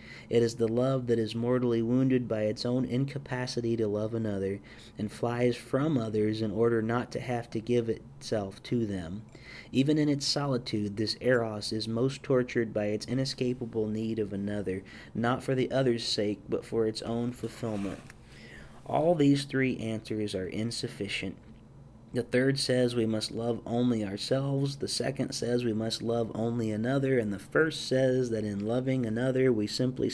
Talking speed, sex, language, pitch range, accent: 170 wpm, male, English, 110-130 Hz, American